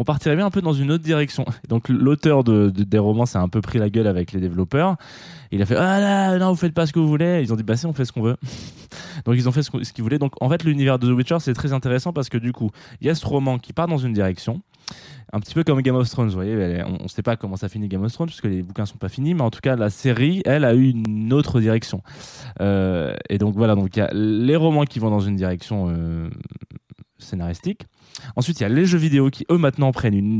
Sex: male